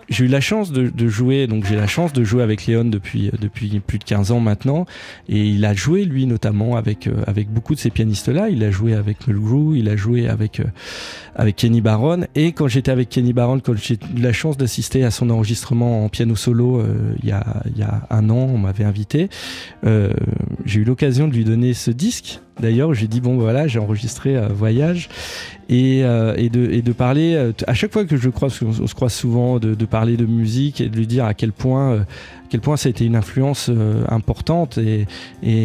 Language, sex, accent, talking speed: French, male, French, 235 wpm